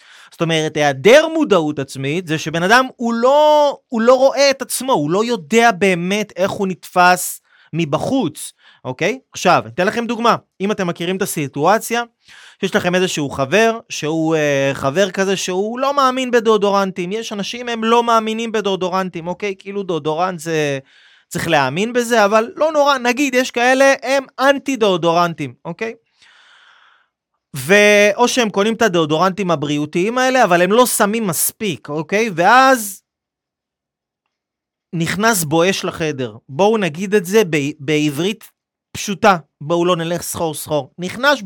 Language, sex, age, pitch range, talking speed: Hebrew, male, 30-49, 160-235 Hz, 140 wpm